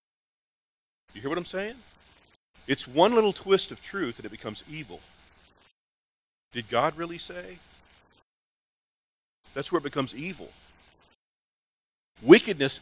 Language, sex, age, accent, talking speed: English, male, 40-59, American, 115 wpm